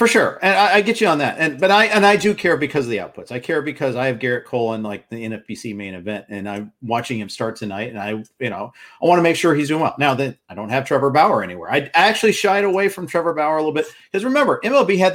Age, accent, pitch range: 40-59, American, 120-170 Hz